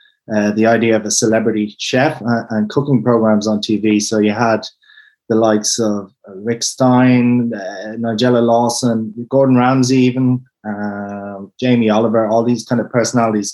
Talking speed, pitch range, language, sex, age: 150 wpm, 110-130 Hz, English, male, 20-39